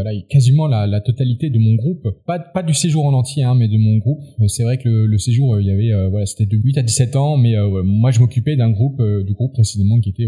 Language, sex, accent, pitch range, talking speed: French, male, French, 110-140 Hz, 305 wpm